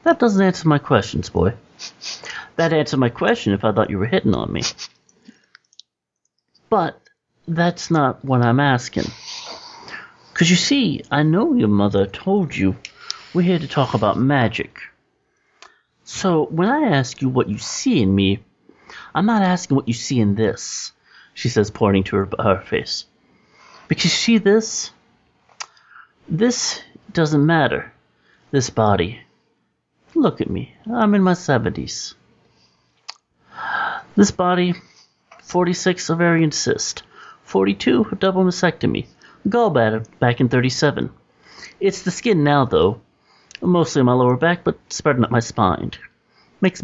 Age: 30-49